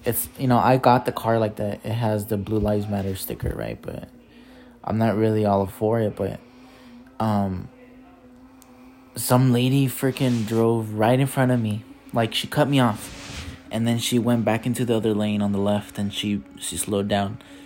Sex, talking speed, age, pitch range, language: male, 195 wpm, 20-39, 105-135 Hz, English